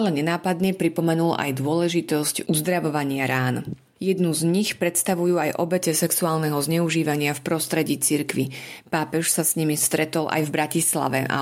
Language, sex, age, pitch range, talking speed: Slovak, female, 30-49, 150-175 Hz, 140 wpm